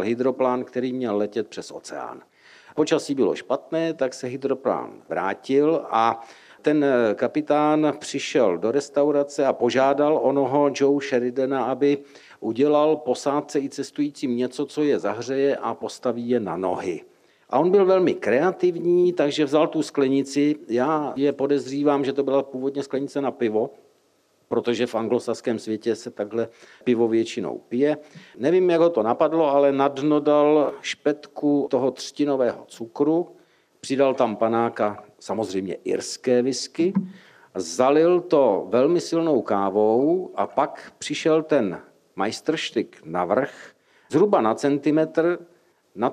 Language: Czech